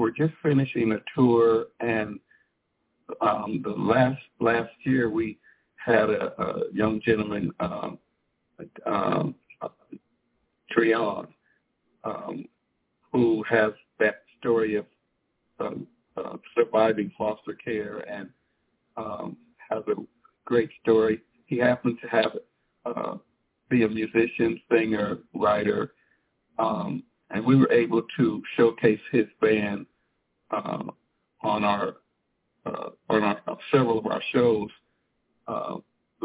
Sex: male